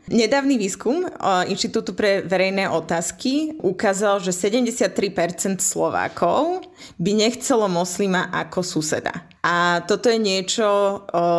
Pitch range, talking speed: 175-205 Hz, 100 wpm